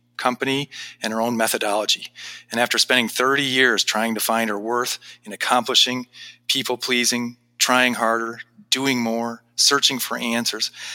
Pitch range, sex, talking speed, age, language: 110-125 Hz, male, 140 wpm, 40-59, English